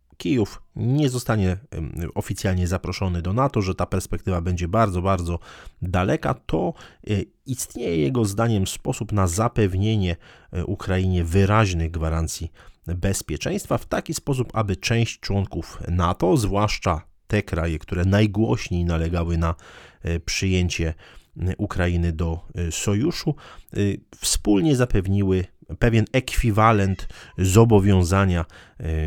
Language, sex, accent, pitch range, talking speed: Polish, male, native, 85-105 Hz, 100 wpm